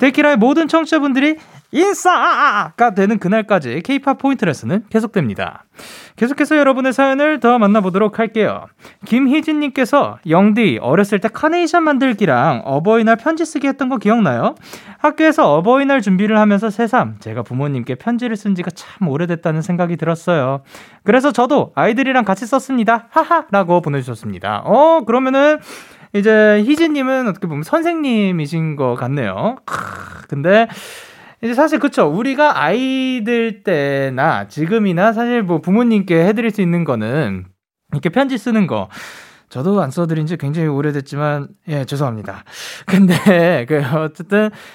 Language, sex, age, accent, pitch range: Korean, male, 20-39, native, 155-260 Hz